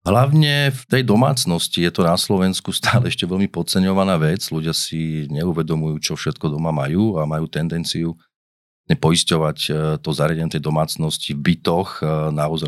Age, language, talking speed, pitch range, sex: 40-59, Slovak, 140 wpm, 80-95 Hz, male